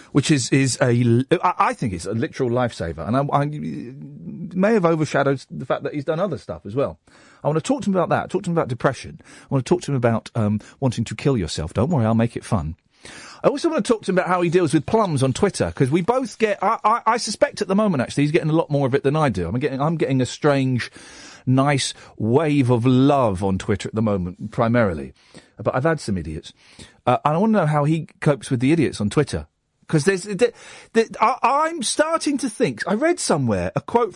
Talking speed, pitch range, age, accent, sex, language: 250 wpm, 120-190 Hz, 40-59, British, male, English